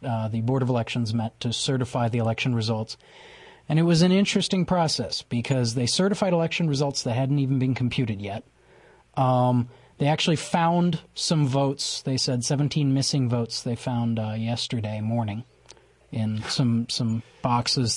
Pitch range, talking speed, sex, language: 125-170 Hz, 160 wpm, male, English